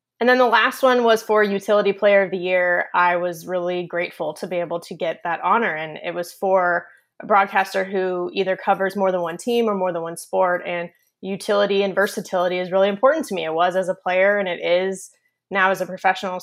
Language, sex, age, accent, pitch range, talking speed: English, female, 20-39, American, 185-215 Hz, 225 wpm